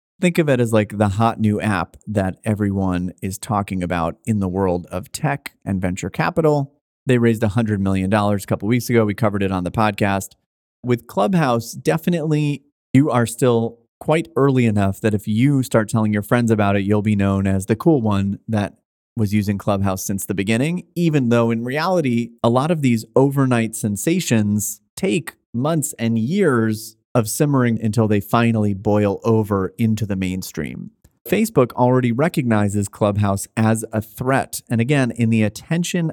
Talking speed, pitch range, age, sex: 175 wpm, 105-125 Hz, 30-49, male